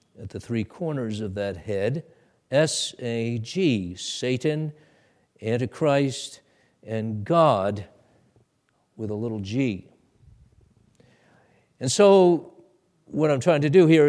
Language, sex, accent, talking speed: English, male, American, 100 wpm